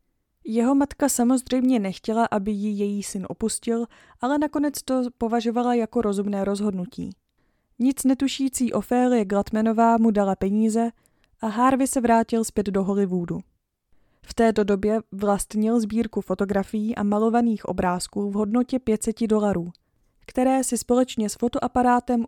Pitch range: 200-240 Hz